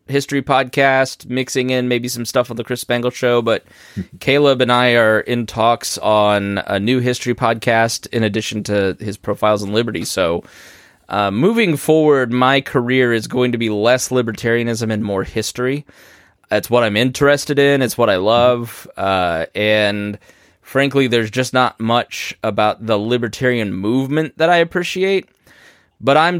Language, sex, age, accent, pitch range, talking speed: English, male, 20-39, American, 110-135 Hz, 160 wpm